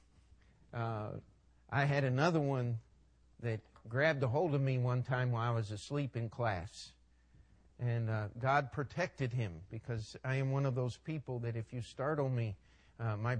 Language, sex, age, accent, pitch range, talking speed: English, male, 50-69, American, 100-140 Hz, 170 wpm